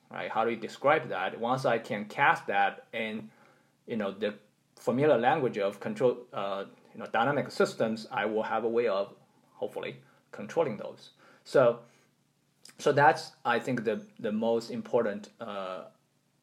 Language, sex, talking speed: English, male, 155 wpm